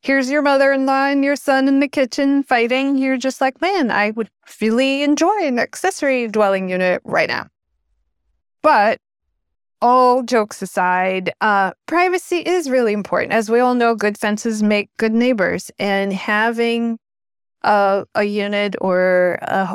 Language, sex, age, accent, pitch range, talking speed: English, female, 30-49, American, 185-245 Hz, 150 wpm